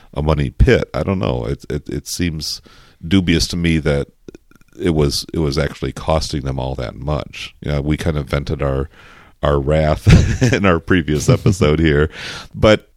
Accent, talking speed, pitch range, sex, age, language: American, 185 wpm, 75-85 Hz, male, 40-59, English